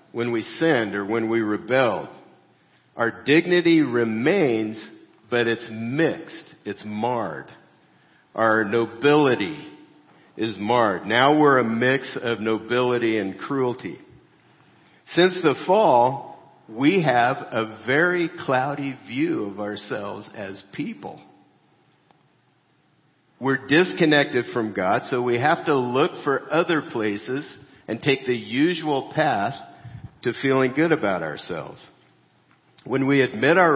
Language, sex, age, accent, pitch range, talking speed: English, male, 50-69, American, 105-135 Hz, 115 wpm